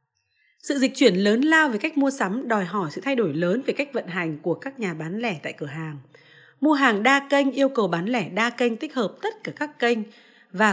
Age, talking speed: 20-39, 245 wpm